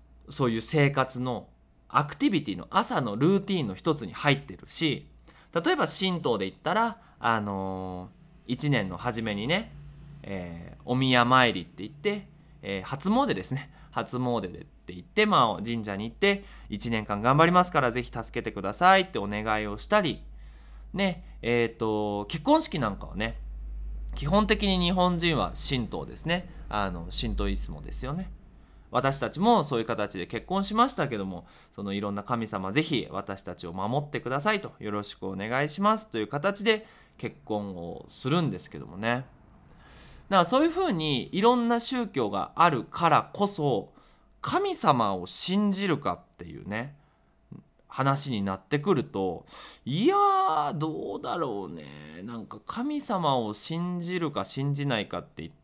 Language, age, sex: Japanese, 20-39, male